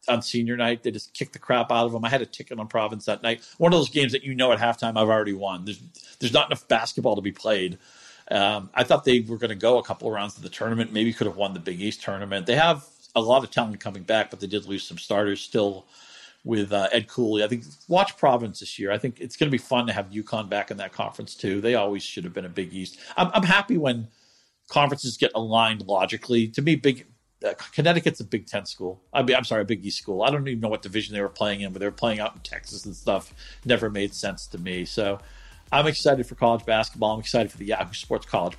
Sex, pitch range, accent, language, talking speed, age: male, 105-130 Hz, American, English, 265 wpm, 40-59